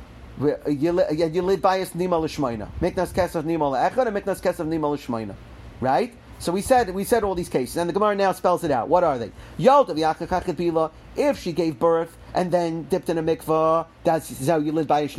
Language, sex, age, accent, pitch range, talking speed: English, male, 40-59, American, 155-190 Hz, 205 wpm